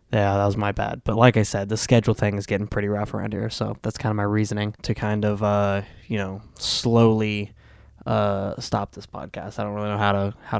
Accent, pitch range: American, 100-115 Hz